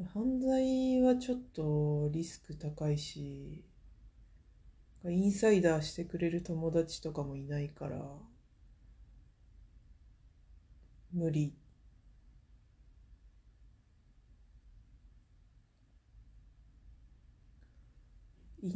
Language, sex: Japanese, female